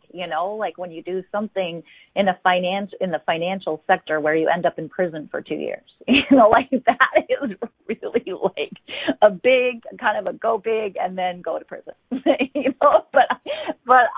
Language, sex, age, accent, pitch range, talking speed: English, female, 30-49, American, 180-255 Hz, 195 wpm